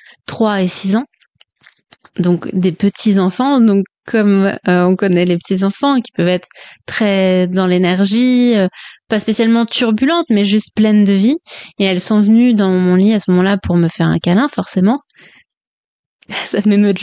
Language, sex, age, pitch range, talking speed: French, female, 20-39, 185-225 Hz, 170 wpm